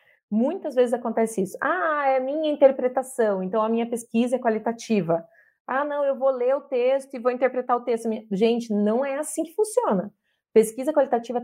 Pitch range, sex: 205-265 Hz, female